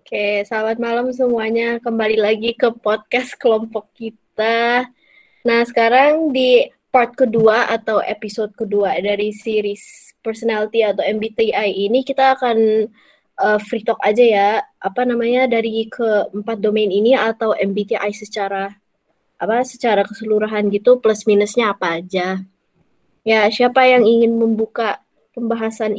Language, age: Indonesian, 20-39